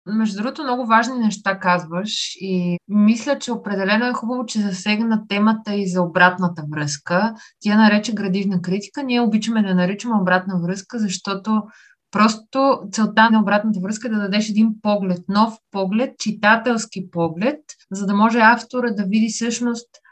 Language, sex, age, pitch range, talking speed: Bulgarian, female, 20-39, 180-225 Hz, 150 wpm